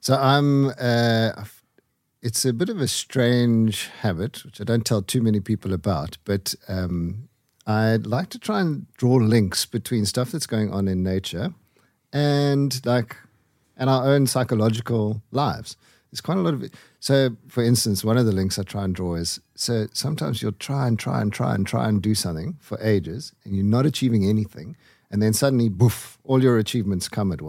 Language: English